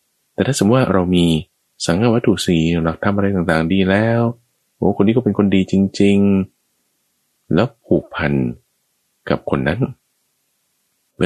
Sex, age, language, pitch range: male, 20-39, Thai, 65-100 Hz